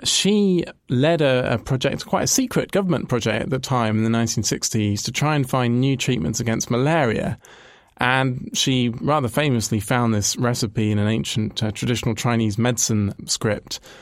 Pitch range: 110-130 Hz